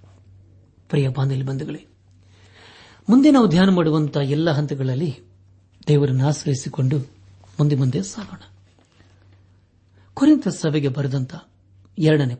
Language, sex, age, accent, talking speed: Kannada, male, 60-79, native, 85 wpm